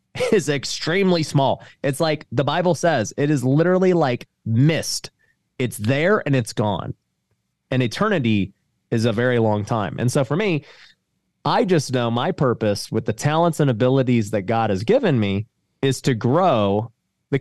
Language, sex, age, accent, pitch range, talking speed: English, male, 30-49, American, 110-150 Hz, 165 wpm